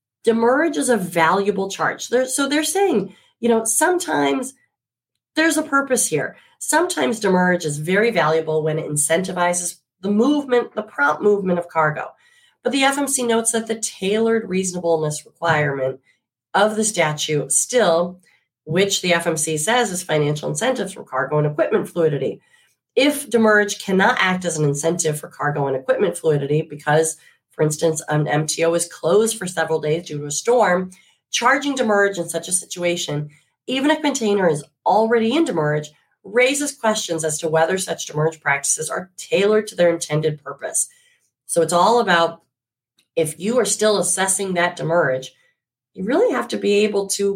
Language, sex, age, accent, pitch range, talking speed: English, female, 30-49, American, 160-230 Hz, 160 wpm